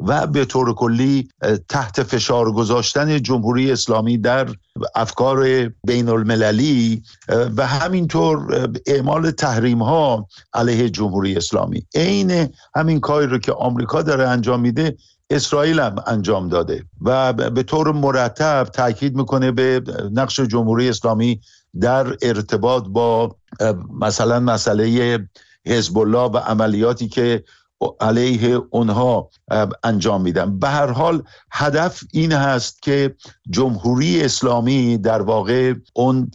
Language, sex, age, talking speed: Persian, male, 50-69, 115 wpm